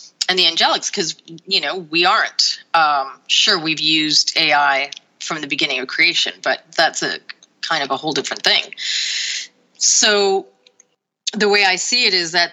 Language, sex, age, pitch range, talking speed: English, female, 30-49, 165-200 Hz, 170 wpm